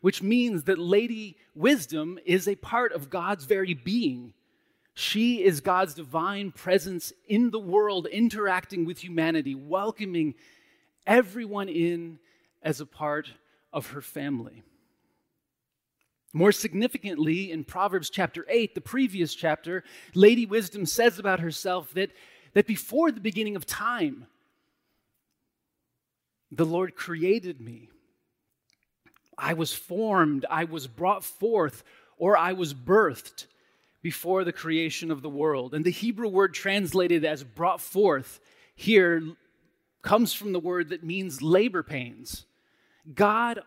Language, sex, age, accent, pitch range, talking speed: English, male, 30-49, American, 165-210 Hz, 125 wpm